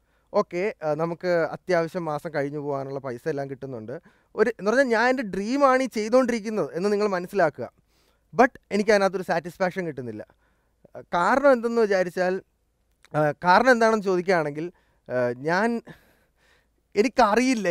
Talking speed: 110 wpm